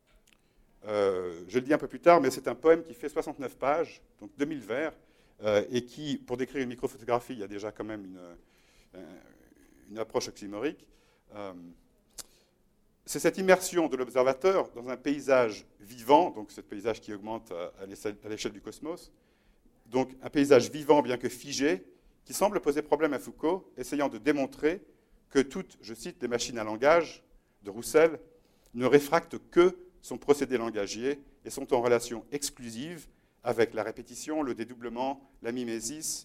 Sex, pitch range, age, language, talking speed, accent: male, 115-150 Hz, 50-69, French, 165 wpm, French